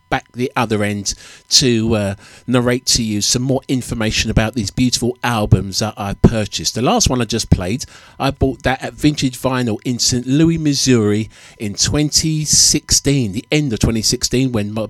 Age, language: 50-69, English